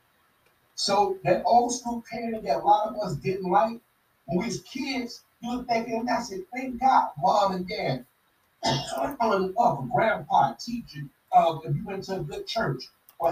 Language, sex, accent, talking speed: English, male, American, 195 wpm